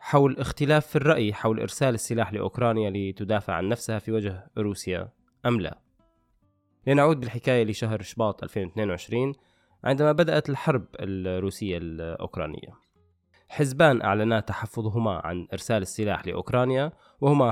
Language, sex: Arabic, male